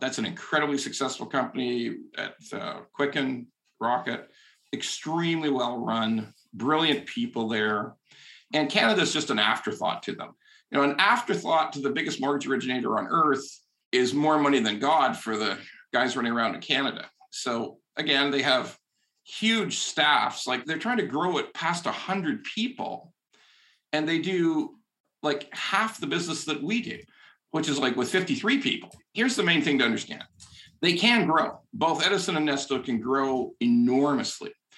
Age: 50-69